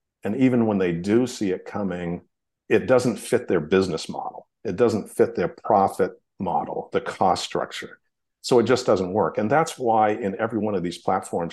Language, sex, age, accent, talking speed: English, male, 50-69, American, 195 wpm